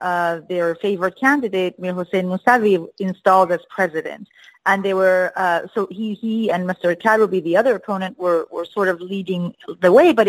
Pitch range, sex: 180-230 Hz, female